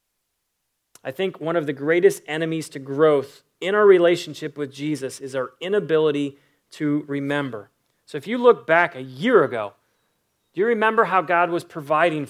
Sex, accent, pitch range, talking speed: male, American, 155-200 Hz, 165 wpm